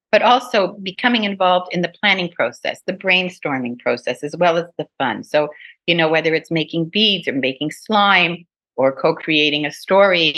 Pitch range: 140-185 Hz